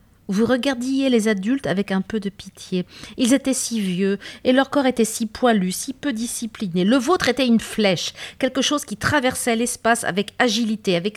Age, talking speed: 50-69, 190 wpm